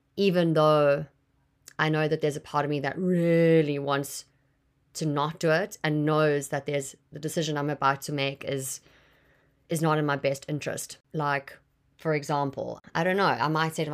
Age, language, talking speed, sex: 30-49, English, 190 wpm, female